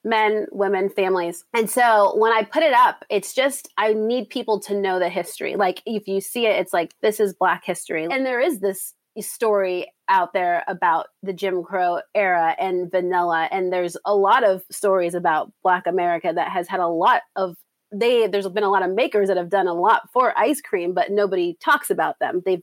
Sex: female